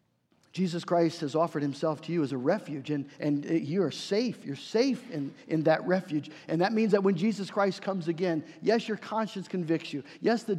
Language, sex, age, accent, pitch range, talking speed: English, male, 50-69, American, 160-215 Hz, 210 wpm